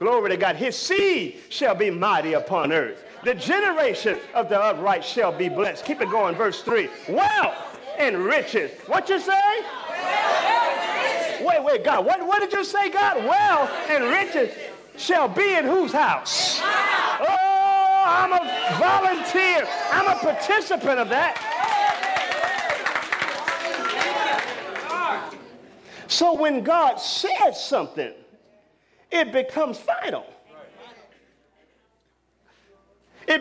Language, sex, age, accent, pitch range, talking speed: English, male, 40-59, American, 295-400 Hz, 115 wpm